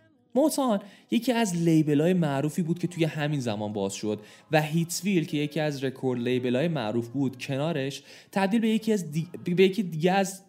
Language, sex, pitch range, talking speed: Persian, male, 125-175 Hz, 190 wpm